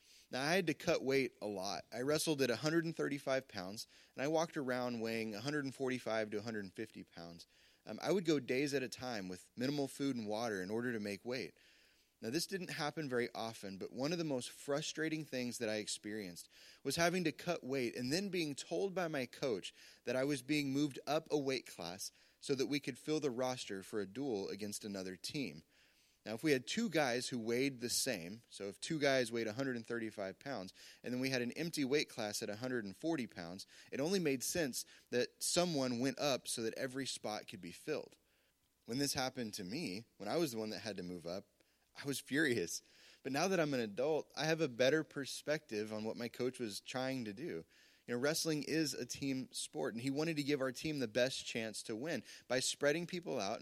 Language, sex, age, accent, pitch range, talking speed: English, male, 30-49, American, 110-145 Hz, 215 wpm